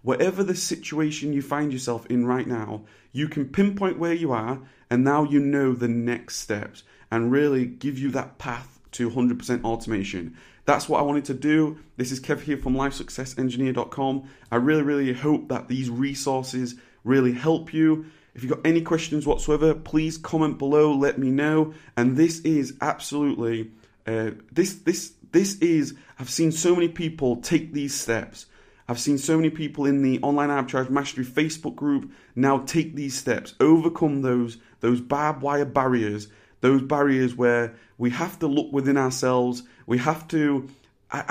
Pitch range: 120-150 Hz